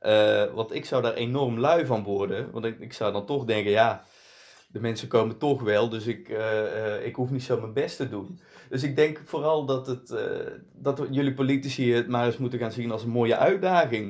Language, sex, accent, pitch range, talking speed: Dutch, male, Dutch, 105-130 Hz, 220 wpm